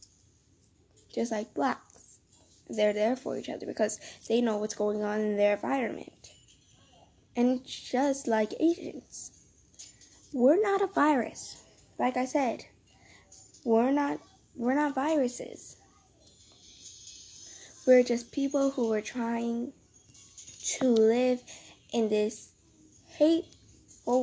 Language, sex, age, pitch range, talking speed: English, female, 10-29, 215-255 Hz, 110 wpm